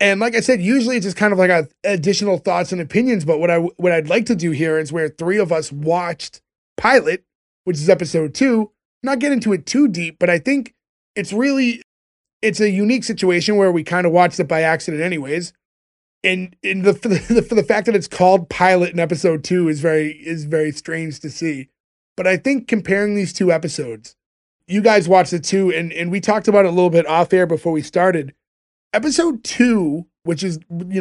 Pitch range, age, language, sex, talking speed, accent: 165-200 Hz, 20-39, English, male, 220 wpm, American